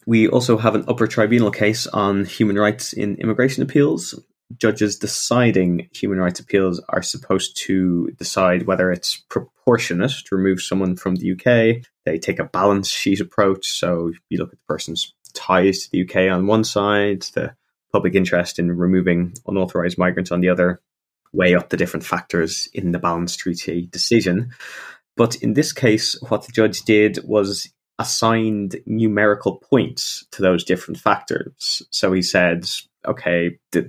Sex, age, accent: male, 20-39, British